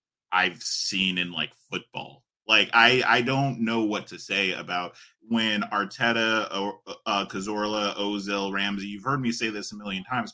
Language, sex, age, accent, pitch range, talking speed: English, male, 20-39, American, 100-125 Hz, 160 wpm